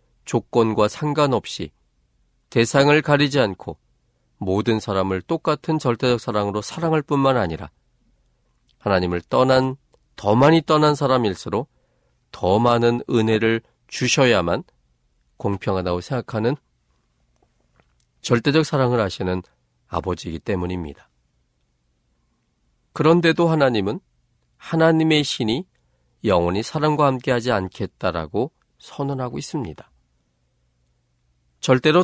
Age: 40-59